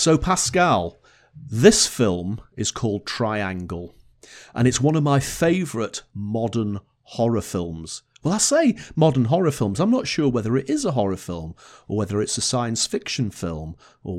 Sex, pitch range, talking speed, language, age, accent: male, 100-140 Hz, 165 wpm, English, 40-59, British